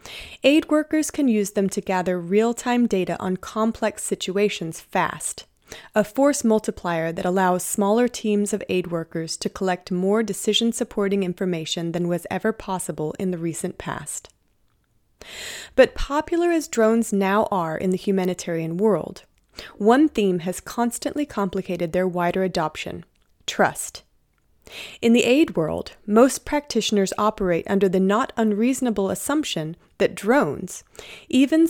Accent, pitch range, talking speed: American, 180-225 Hz, 130 wpm